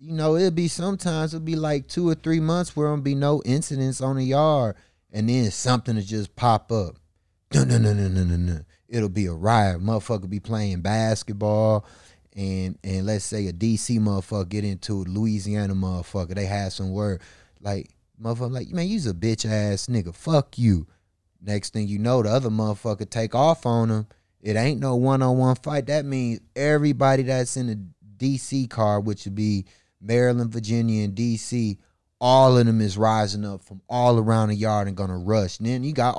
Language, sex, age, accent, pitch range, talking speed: English, male, 20-39, American, 105-135 Hz, 195 wpm